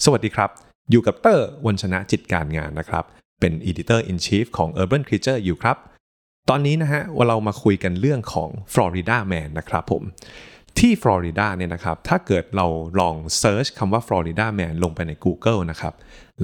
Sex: male